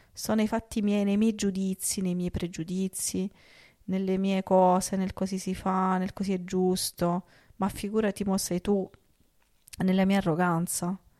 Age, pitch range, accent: 30-49, 175-195 Hz, native